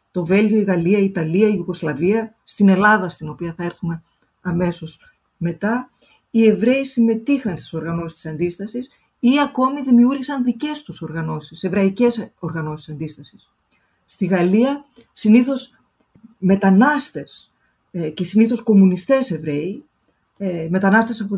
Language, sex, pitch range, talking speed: Greek, female, 175-230 Hz, 120 wpm